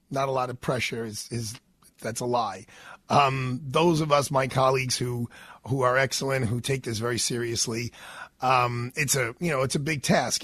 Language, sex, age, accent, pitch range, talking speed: English, male, 40-59, American, 120-150 Hz, 195 wpm